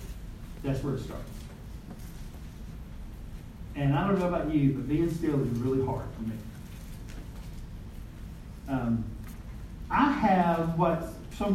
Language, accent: English, American